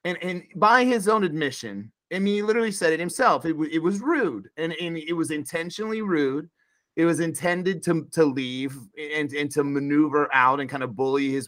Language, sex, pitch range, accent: English, male, 150-215 Hz, American